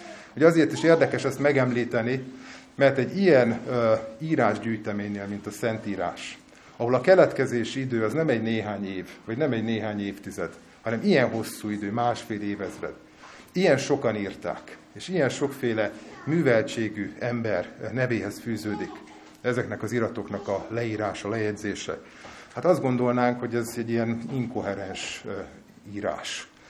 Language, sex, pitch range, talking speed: Hungarian, male, 110-130 Hz, 135 wpm